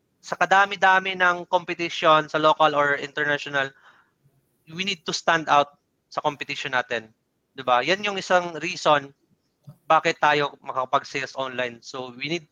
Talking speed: 135 wpm